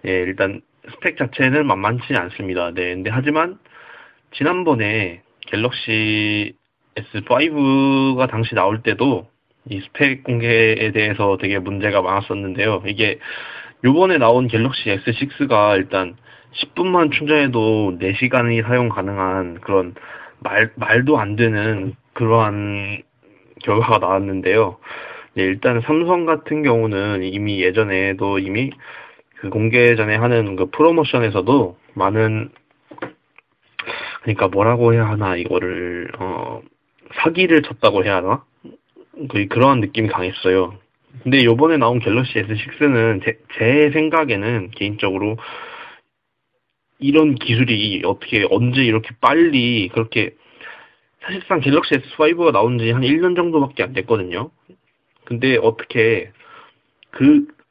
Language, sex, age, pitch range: Korean, male, 20-39, 100-140 Hz